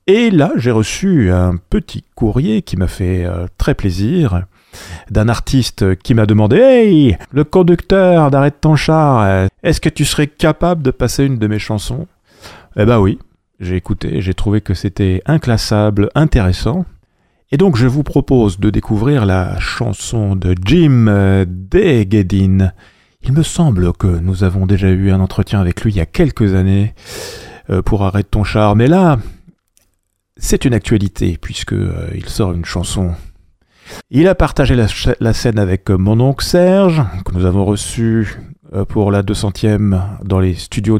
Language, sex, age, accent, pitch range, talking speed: French, male, 40-59, French, 95-130 Hz, 160 wpm